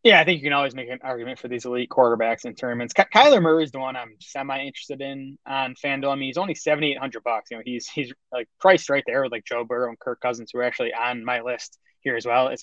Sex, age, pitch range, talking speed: male, 20-39, 120-135 Hz, 285 wpm